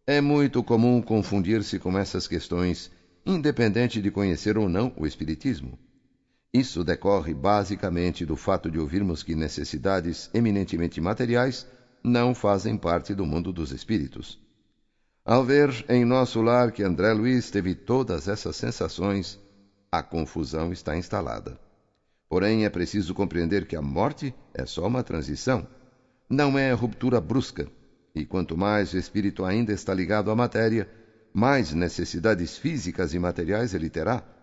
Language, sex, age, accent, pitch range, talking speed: Portuguese, male, 60-79, Brazilian, 90-120 Hz, 140 wpm